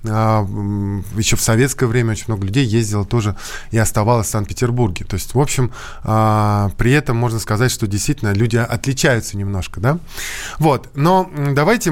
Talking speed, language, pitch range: 150 wpm, Russian, 110-145 Hz